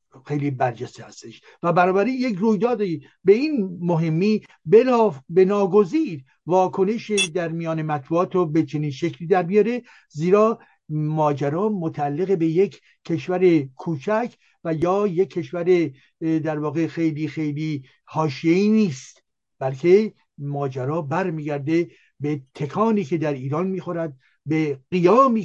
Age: 60-79